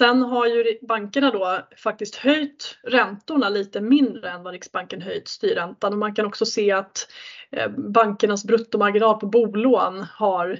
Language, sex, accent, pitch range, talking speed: Swedish, female, native, 200-240 Hz, 145 wpm